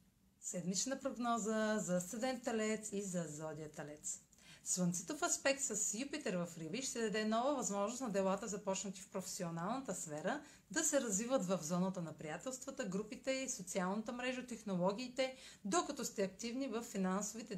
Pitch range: 185-260 Hz